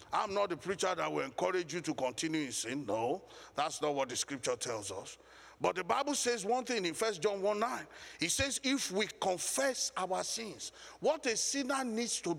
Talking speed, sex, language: 210 wpm, male, English